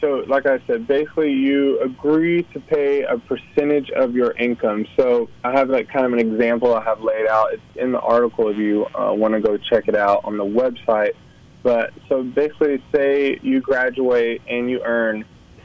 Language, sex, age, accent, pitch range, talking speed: English, male, 20-39, American, 115-140 Hz, 195 wpm